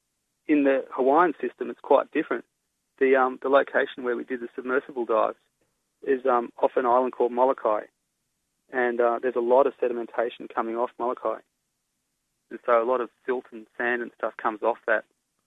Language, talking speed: English, 180 wpm